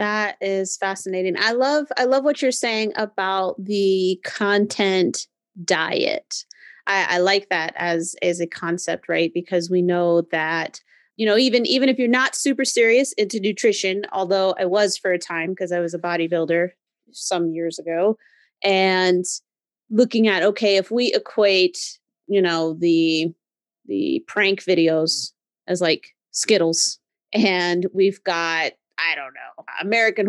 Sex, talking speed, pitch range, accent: female, 150 wpm, 175-220 Hz, American